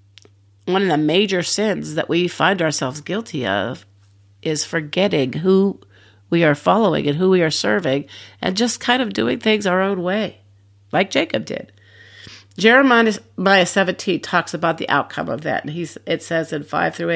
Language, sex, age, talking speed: English, female, 50-69, 170 wpm